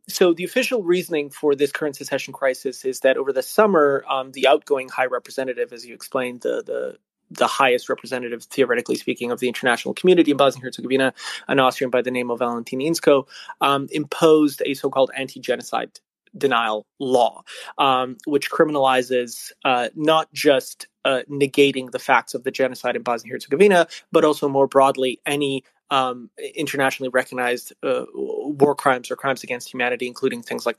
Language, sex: English, male